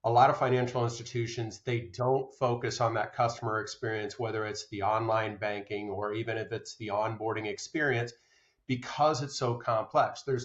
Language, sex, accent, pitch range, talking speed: English, male, American, 110-130 Hz, 165 wpm